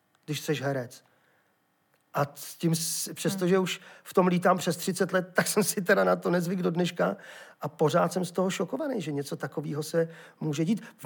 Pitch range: 150-180 Hz